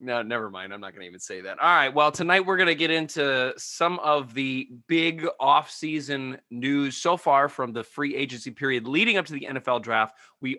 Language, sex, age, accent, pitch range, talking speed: English, male, 30-49, American, 120-150 Hz, 220 wpm